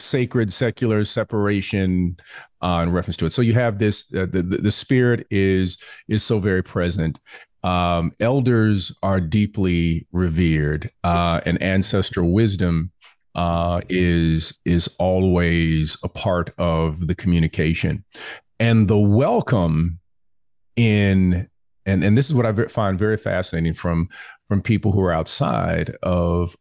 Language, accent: English, American